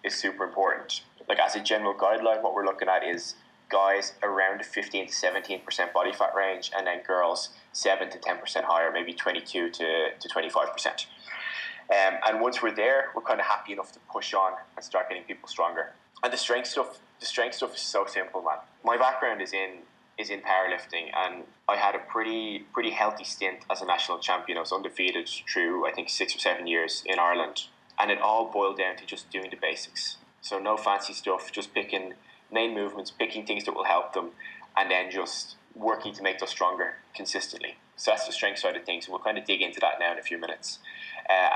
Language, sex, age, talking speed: English, male, 10-29, 215 wpm